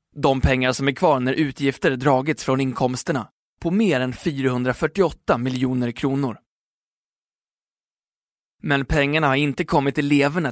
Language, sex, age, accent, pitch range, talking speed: Swedish, male, 20-39, native, 130-150 Hz, 125 wpm